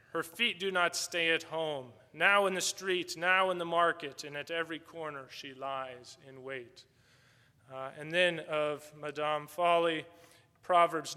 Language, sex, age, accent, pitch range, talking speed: English, male, 30-49, American, 135-170 Hz, 160 wpm